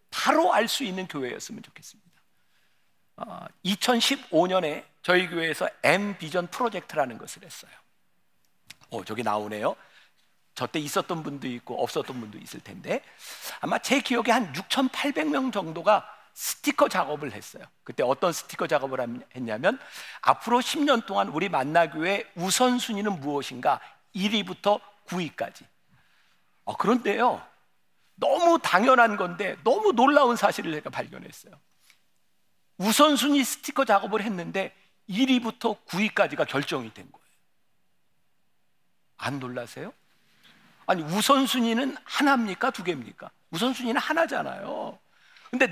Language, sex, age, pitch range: Korean, male, 50-69, 165-250 Hz